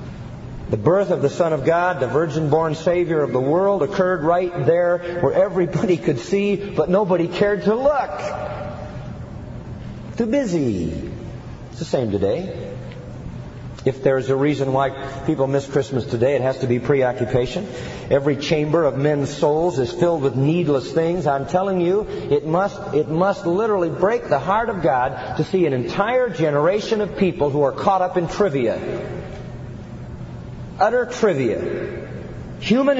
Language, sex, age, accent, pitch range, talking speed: English, male, 40-59, American, 125-180 Hz, 155 wpm